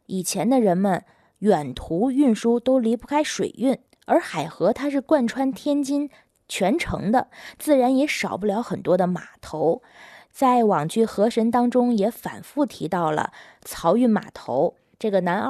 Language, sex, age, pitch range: Chinese, female, 20-39, 200-265 Hz